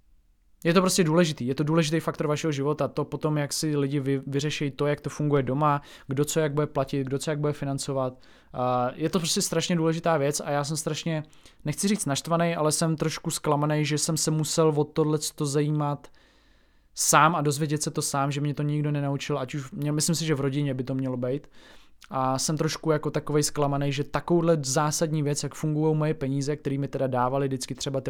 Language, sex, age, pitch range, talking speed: Czech, male, 20-39, 135-155 Hz, 210 wpm